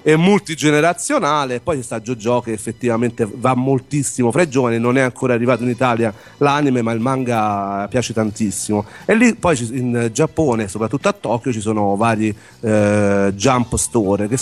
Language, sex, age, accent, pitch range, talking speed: Italian, male, 40-59, native, 110-130 Hz, 165 wpm